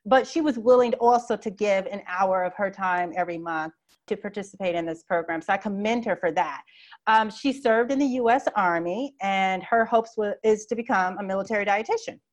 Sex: female